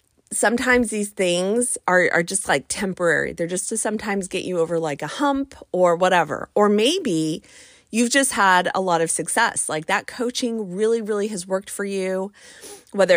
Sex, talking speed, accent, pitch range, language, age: female, 180 wpm, American, 175-220 Hz, English, 30-49